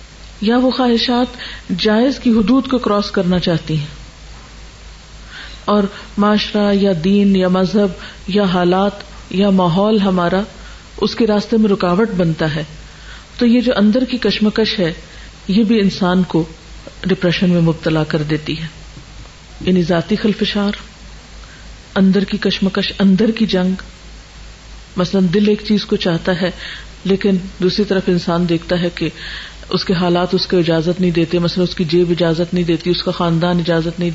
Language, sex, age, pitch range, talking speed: Urdu, female, 40-59, 180-210 Hz, 155 wpm